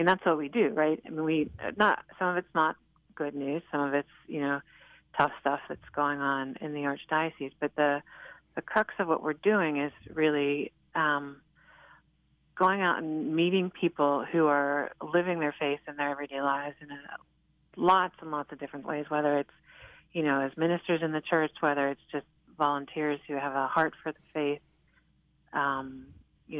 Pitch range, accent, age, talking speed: 145-160 Hz, American, 40-59, 185 wpm